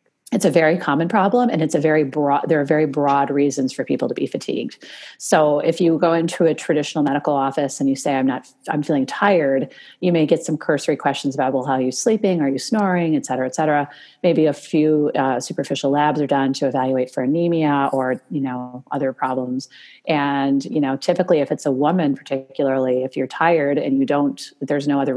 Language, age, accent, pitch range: English, 30-49, American, 130-155 Hz